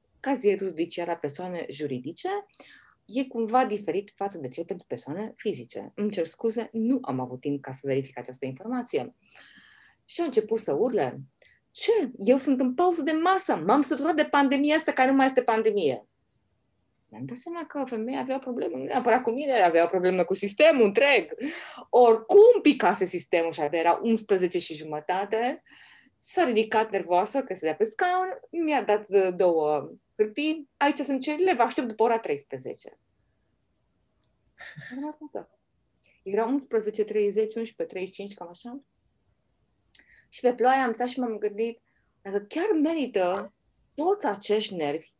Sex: female